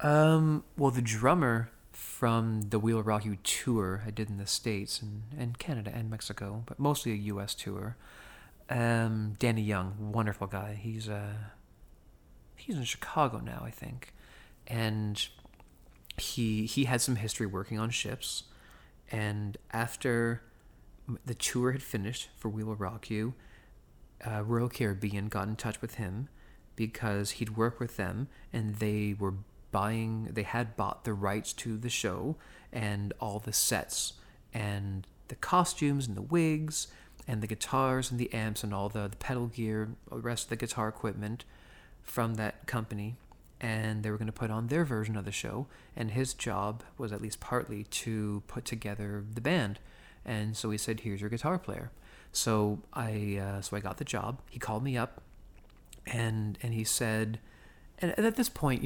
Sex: male